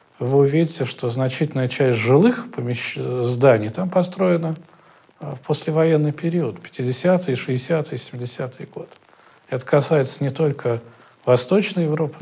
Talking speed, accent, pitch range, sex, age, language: 115 wpm, native, 130-175 Hz, male, 40-59, Russian